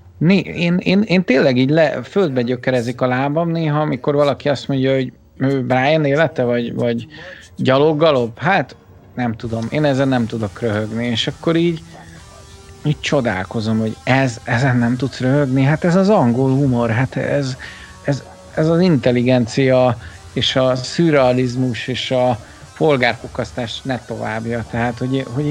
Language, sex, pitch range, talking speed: Hungarian, male, 120-150 Hz, 150 wpm